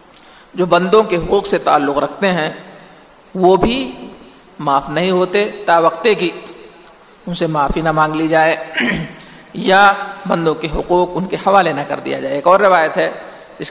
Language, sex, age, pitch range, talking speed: Urdu, male, 50-69, 155-195 Hz, 170 wpm